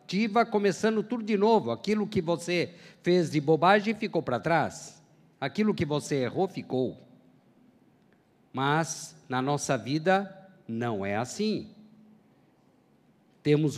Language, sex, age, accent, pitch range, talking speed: Portuguese, male, 50-69, Brazilian, 135-200 Hz, 115 wpm